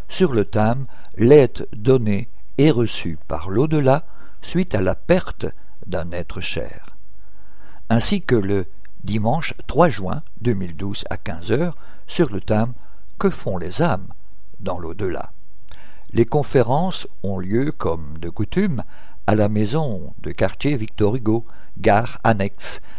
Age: 60-79